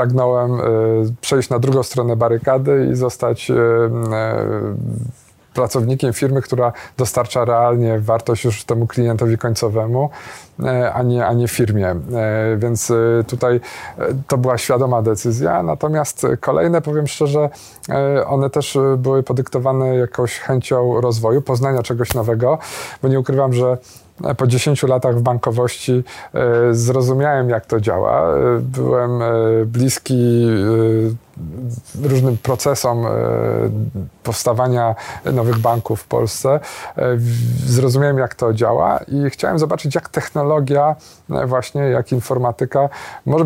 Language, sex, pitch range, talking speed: Polish, male, 115-135 Hz, 110 wpm